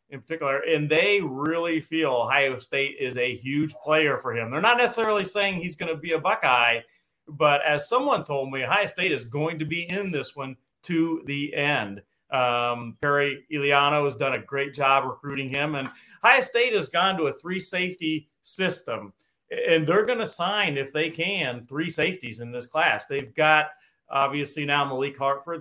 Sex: male